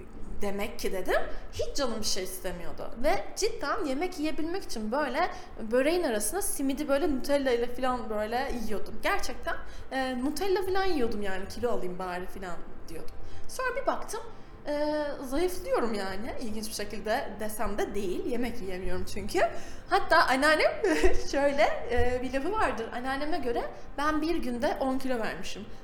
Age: 10-29